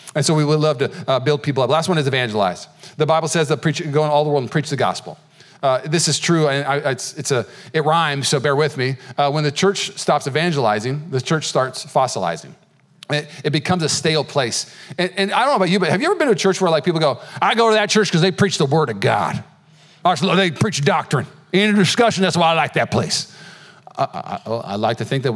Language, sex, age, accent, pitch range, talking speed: English, male, 40-59, American, 140-180 Hz, 255 wpm